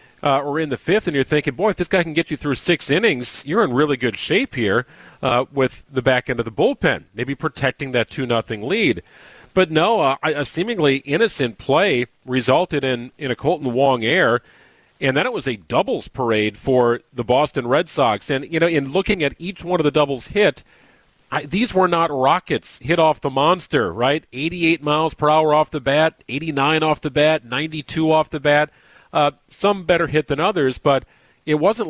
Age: 40-59